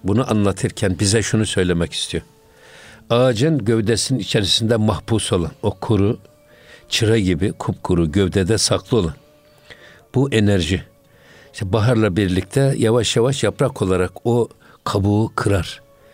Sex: male